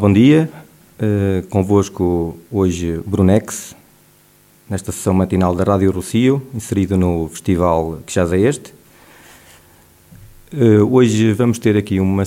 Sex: male